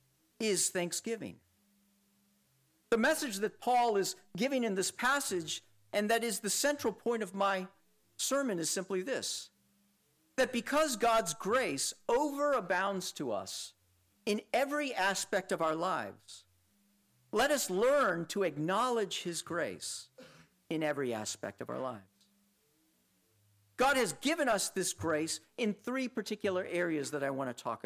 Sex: male